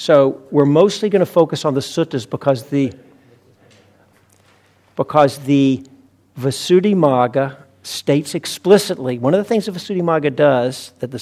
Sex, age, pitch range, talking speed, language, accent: male, 50-69, 125-150 Hz, 135 wpm, English, American